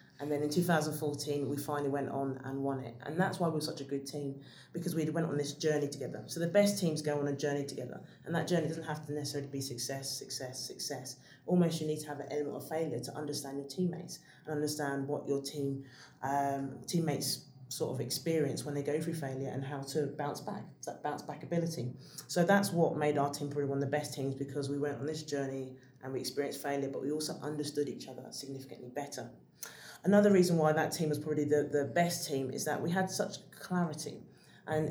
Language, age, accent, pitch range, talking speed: English, 20-39, British, 140-165 Hz, 225 wpm